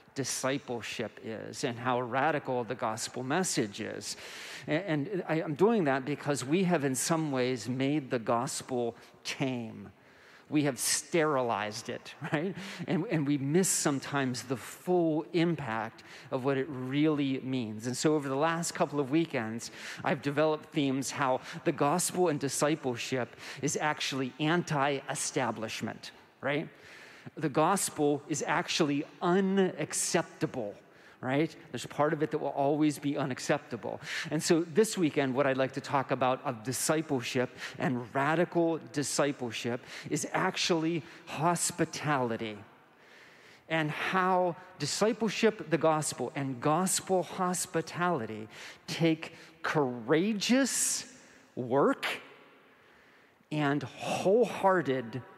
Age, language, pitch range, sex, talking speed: 40-59, English, 130-165 Hz, male, 115 wpm